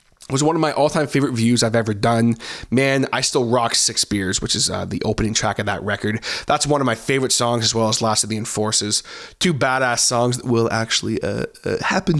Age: 20-39